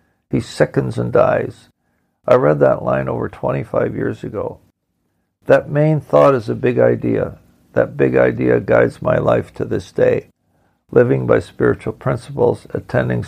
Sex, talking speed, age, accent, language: male, 150 wpm, 60-79, American, English